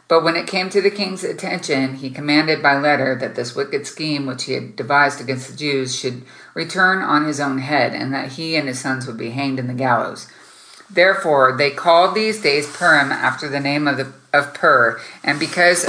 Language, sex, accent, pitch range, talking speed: English, female, American, 135-165 Hz, 210 wpm